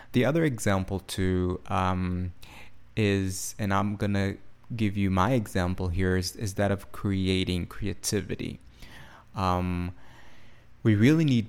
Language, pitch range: English, 95-110 Hz